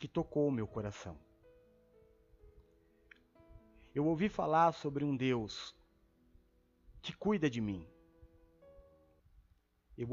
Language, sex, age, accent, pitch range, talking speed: Portuguese, male, 40-59, Brazilian, 95-160 Hz, 95 wpm